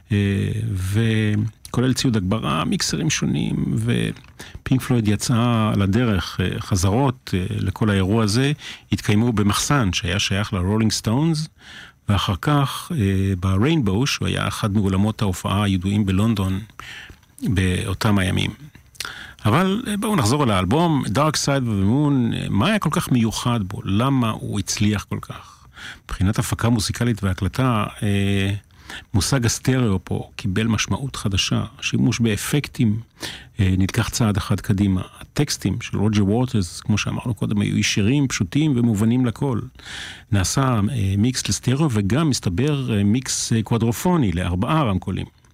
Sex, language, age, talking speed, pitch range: male, Hebrew, 40-59, 115 wpm, 100-125 Hz